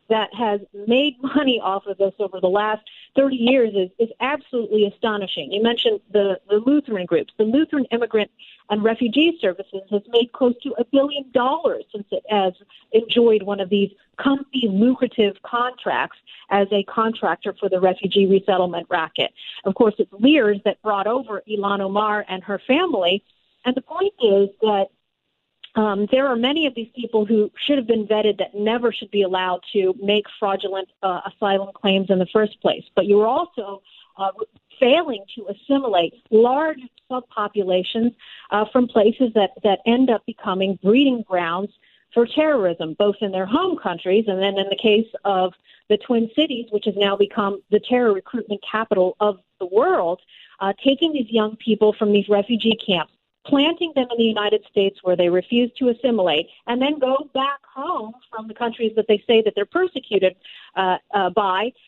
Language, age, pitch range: English, 40-59, 200-255 Hz